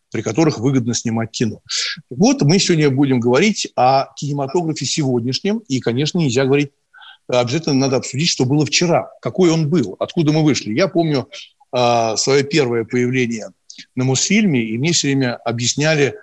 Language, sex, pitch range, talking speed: Russian, male, 125-160 Hz, 155 wpm